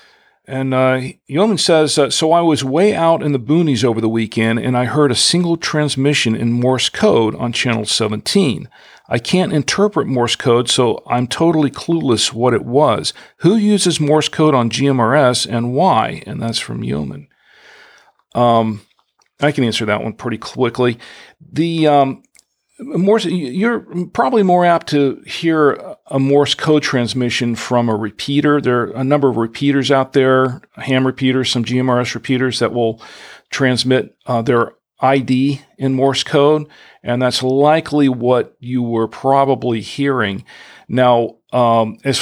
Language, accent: English, American